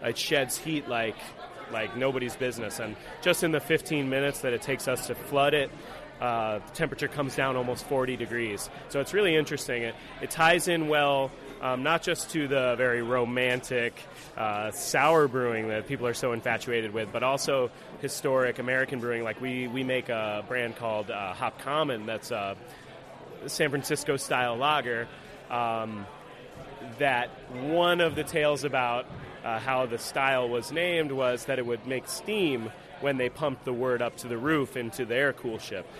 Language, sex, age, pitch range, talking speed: English, male, 30-49, 120-145 Hz, 175 wpm